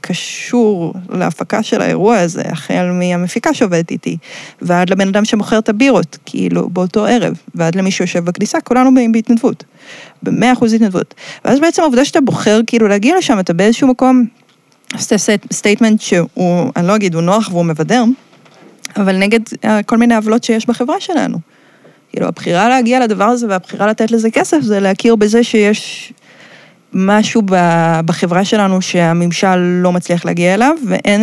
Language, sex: Hebrew, female